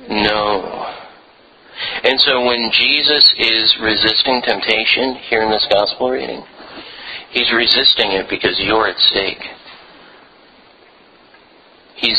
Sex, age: male, 40-59